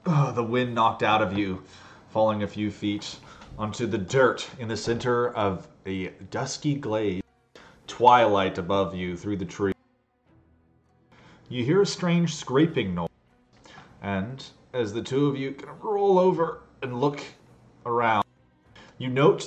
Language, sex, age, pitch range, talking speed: English, male, 30-49, 100-130 Hz, 145 wpm